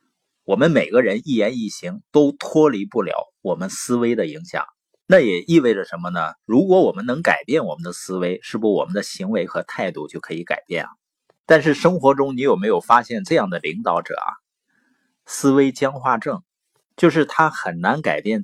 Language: Chinese